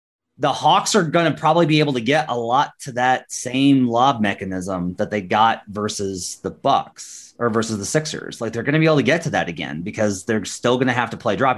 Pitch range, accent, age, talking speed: 105-140 Hz, American, 30-49, 245 wpm